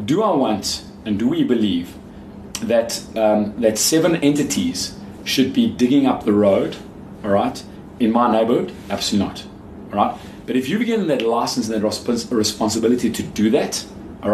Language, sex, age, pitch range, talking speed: English, male, 30-49, 100-120 Hz, 165 wpm